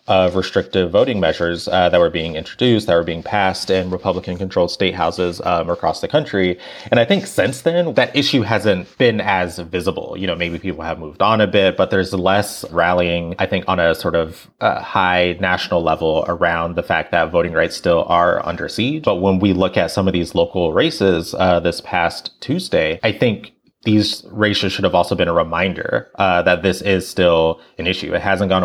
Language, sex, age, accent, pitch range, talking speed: English, male, 30-49, American, 85-95 Hz, 210 wpm